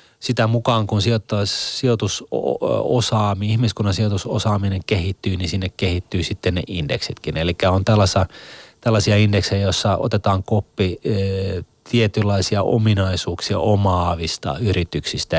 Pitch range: 90-105 Hz